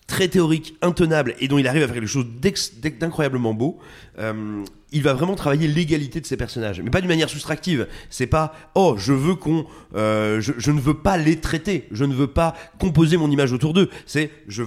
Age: 30-49